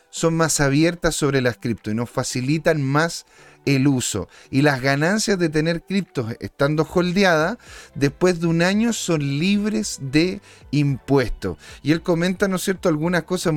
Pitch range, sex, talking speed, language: 140-190 Hz, male, 160 wpm, Spanish